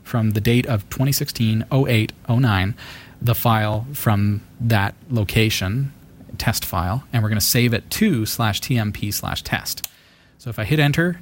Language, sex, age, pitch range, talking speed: English, male, 30-49, 110-130 Hz, 160 wpm